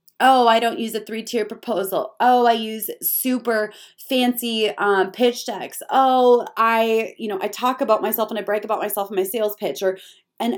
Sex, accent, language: female, American, English